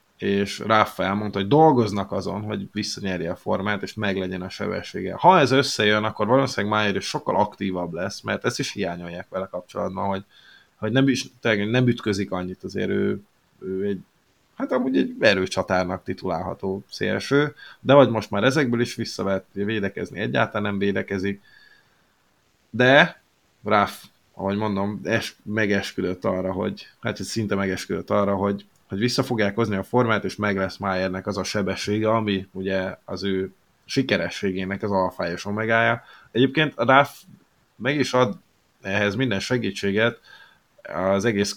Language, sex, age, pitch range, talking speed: Hungarian, male, 30-49, 95-110 Hz, 145 wpm